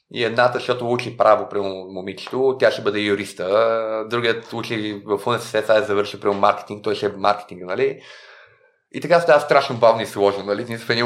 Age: 30-49